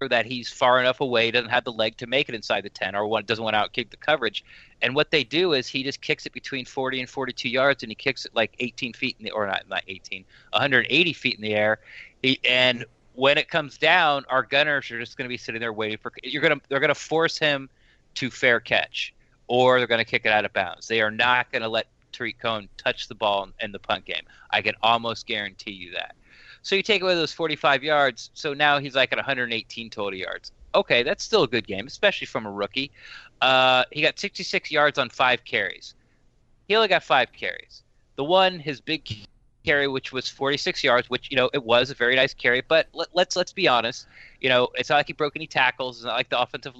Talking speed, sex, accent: 240 wpm, male, American